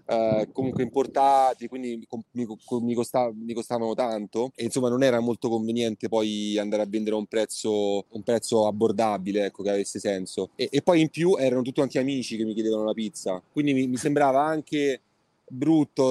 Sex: male